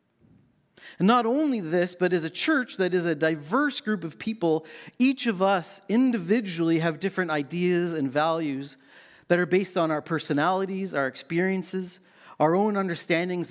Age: 40-59